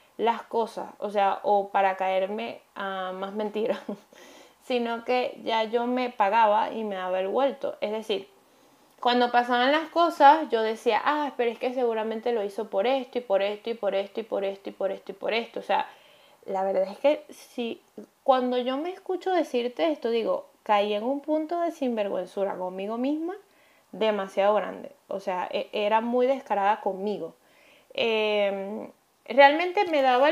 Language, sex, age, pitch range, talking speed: Spanish, female, 20-39, 205-265 Hz, 170 wpm